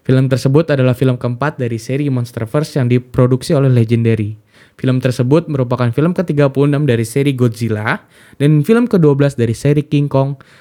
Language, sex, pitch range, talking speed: Indonesian, male, 125-150 Hz, 155 wpm